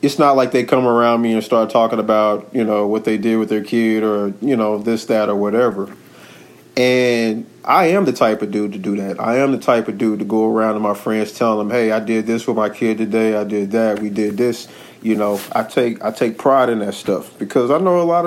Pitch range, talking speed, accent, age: 105-130 Hz, 260 wpm, American, 40-59